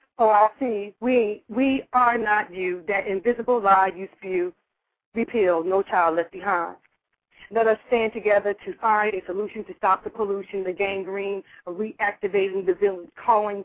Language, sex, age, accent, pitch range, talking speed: English, female, 30-49, American, 195-230 Hz, 165 wpm